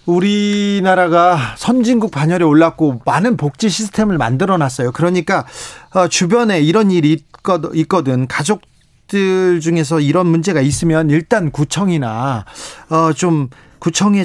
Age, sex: 40-59, male